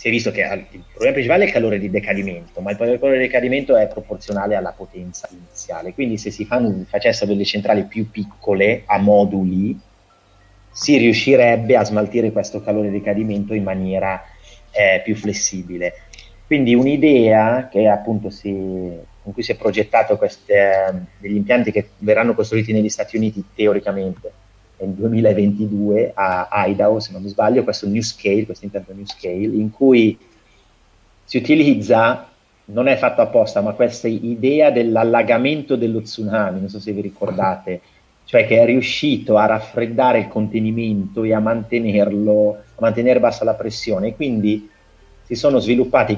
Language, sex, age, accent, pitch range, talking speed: Italian, male, 30-49, native, 100-115 Hz, 150 wpm